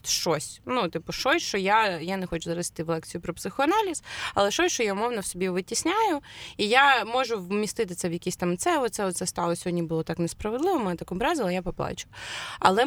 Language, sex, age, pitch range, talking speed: Ukrainian, female, 20-39, 170-235 Hz, 210 wpm